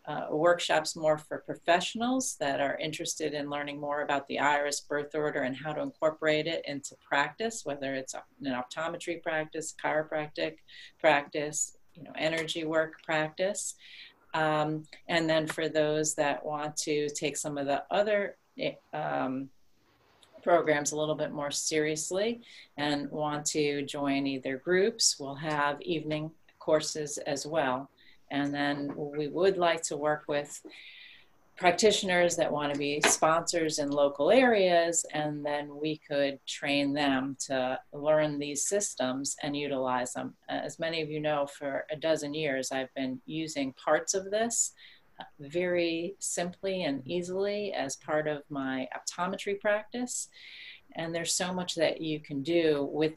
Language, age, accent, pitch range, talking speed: English, 40-59, American, 145-170 Hz, 145 wpm